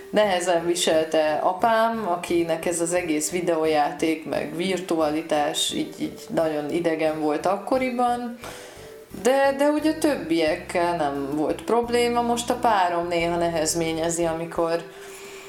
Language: Hungarian